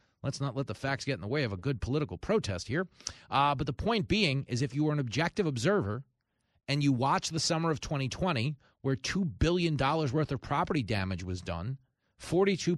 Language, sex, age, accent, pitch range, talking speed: English, male, 30-49, American, 120-155 Hz, 205 wpm